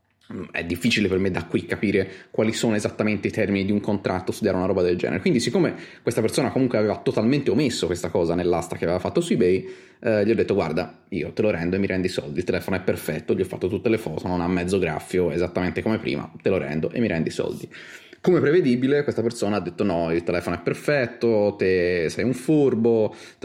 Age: 30-49